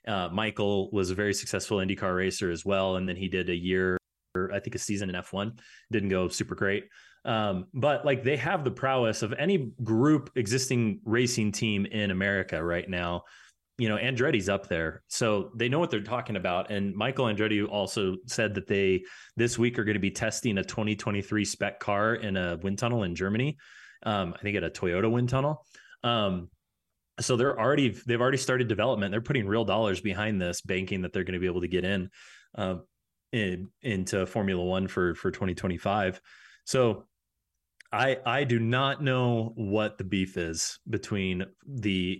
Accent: American